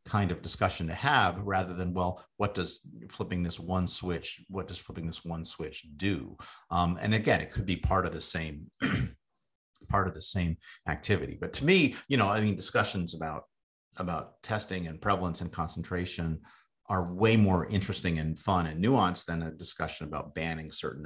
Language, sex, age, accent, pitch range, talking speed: English, male, 50-69, American, 80-100 Hz, 185 wpm